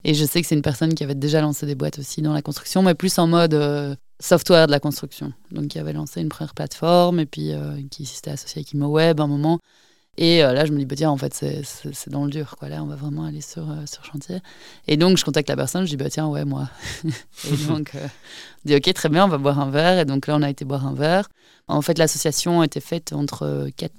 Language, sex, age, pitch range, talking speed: French, female, 20-39, 145-160 Hz, 280 wpm